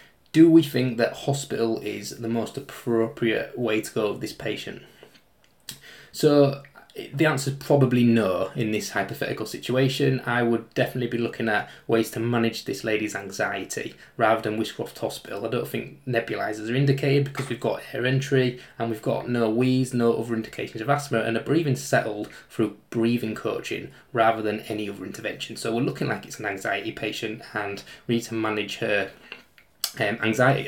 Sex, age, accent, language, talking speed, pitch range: male, 20-39, British, English, 175 wpm, 115-135 Hz